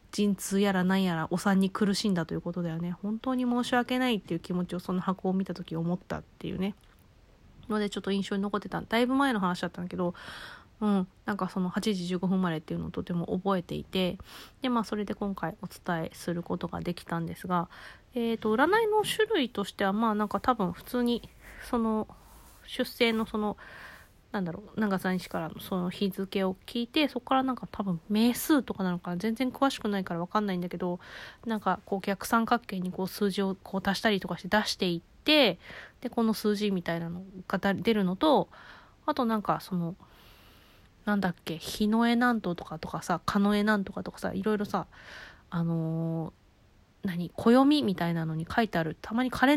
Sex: female